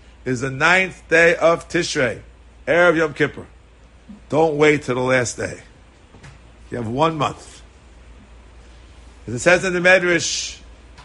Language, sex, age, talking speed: English, male, 50-69, 140 wpm